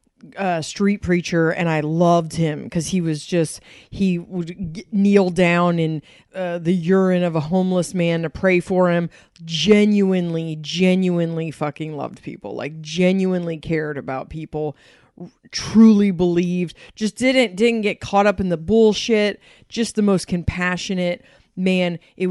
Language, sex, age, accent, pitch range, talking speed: English, female, 30-49, American, 165-195 Hz, 150 wpm